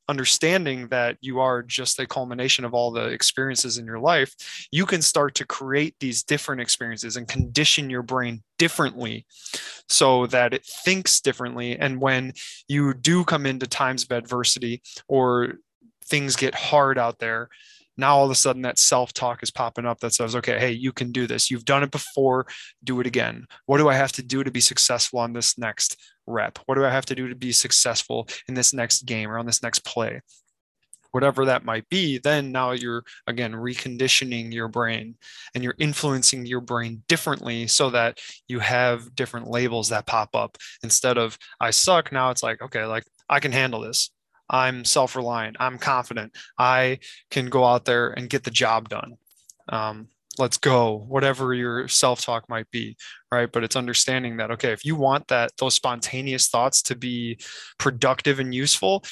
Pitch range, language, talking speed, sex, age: 115-135 Hz, English, 185 wpm, male, 20-39